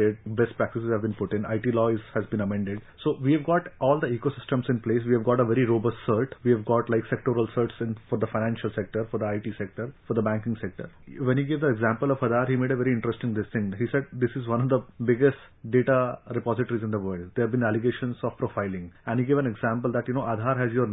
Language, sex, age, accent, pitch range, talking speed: English, male, 30-49, Indian, 115-135 Hz, 250 wpm